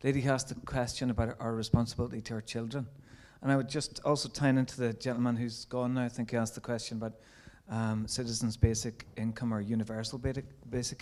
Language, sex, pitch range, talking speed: English, male, 115-130 Hz, 195 wpm